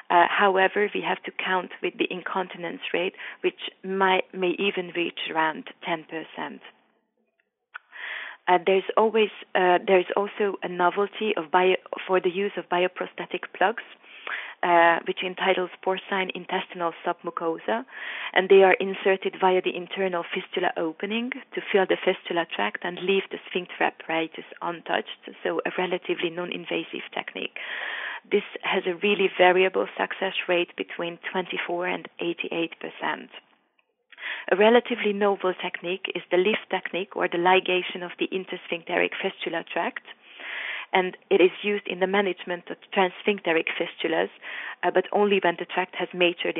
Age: 30-49